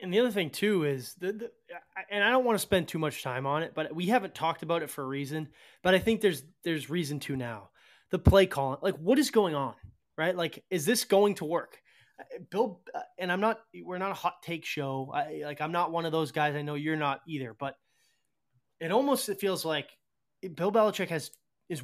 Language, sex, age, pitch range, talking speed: English, male, 20-39, 150-195 Hz, 230 wpm